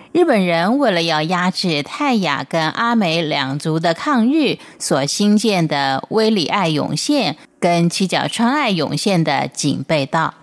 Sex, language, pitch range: female, Chinese, 155-215 Hz